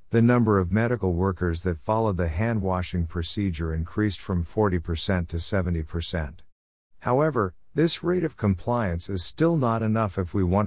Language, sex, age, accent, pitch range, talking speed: English, male, 50-69, American, 85-110 Hz, 150 wpm